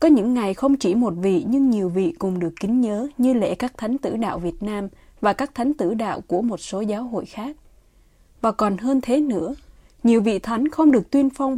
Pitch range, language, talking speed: 195-255 Hz, Vietnamese, 235 wpm